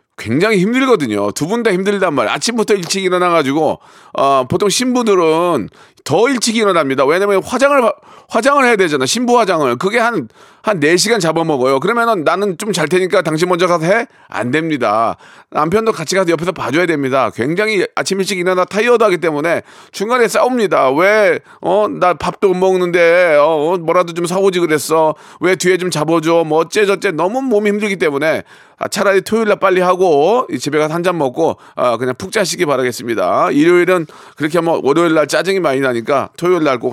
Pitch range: 165-220 Hz